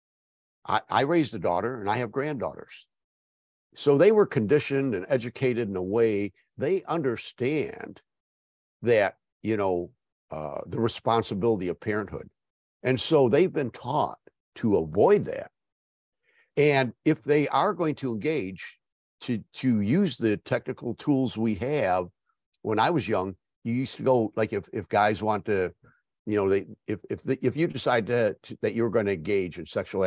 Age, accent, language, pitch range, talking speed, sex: 60-79, American, English, 95-130 Hz, 165 wpm, male